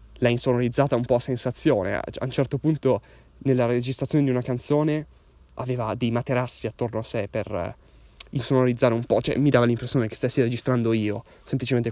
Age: 20-39